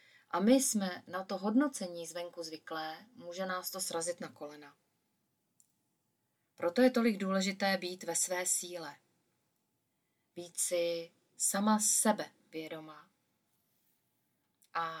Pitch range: 170-215 Hz